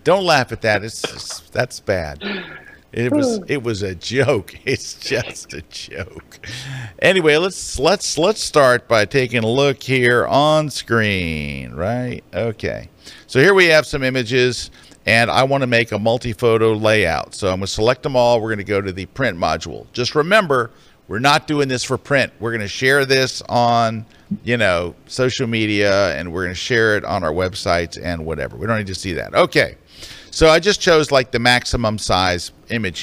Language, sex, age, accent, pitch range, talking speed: English, male, 50-69, American, 100-130 Hz, 190 wpm